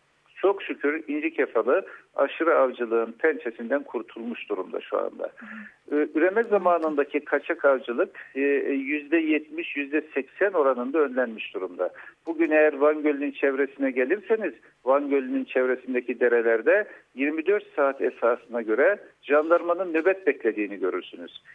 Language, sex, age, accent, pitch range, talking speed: Turkish, male, 50-69, native, 135-180 Hz, 105 wpm